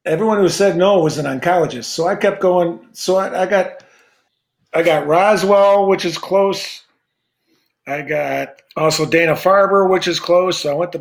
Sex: male